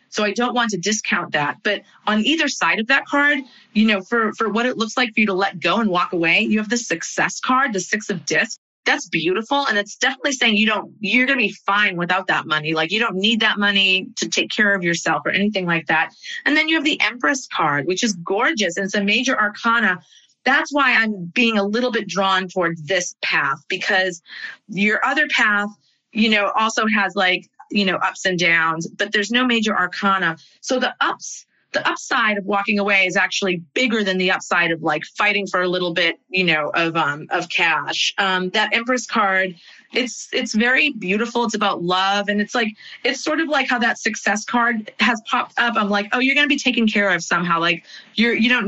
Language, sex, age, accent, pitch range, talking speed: English, female, 30-49, American, 185-235 Hz, 225 wpm